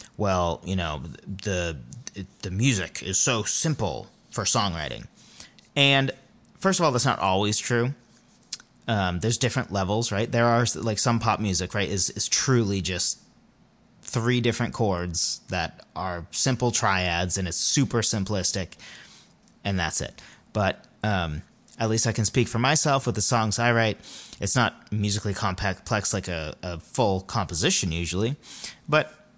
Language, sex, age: English, male, 30-49